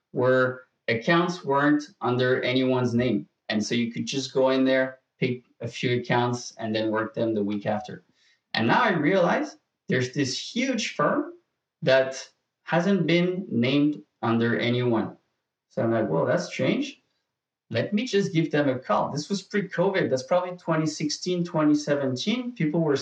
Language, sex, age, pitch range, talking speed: English, male, 30-49, 120-170 Hz, 160 wpm